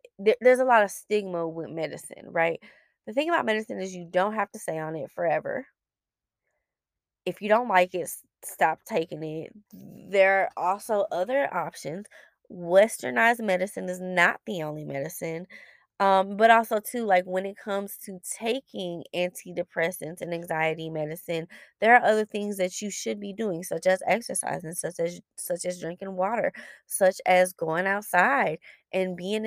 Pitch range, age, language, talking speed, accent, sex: 170-210 Hz, 20-39, English, 160 wpm, American, female